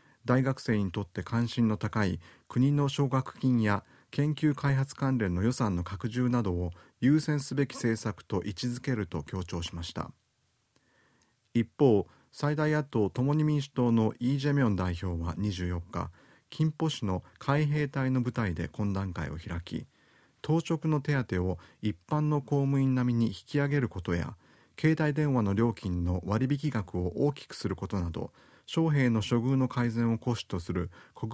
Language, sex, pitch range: Japanese, male, 95-140 Hz